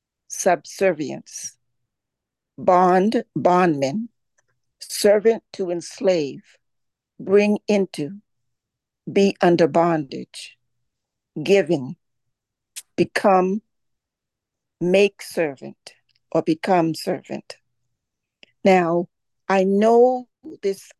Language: English